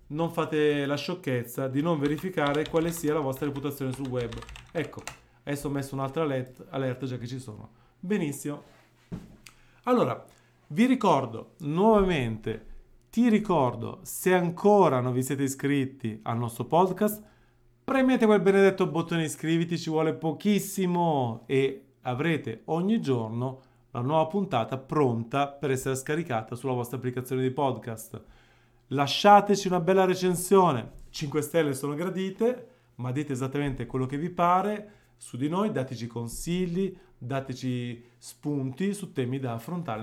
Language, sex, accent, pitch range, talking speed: Italian, male, native, 125-175 Hz, 135 wpm